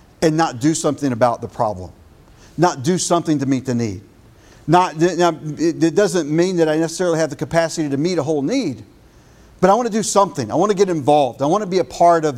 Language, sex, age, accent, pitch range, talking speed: English, male, 50-69, American, 155-210 Hz, 240 wpm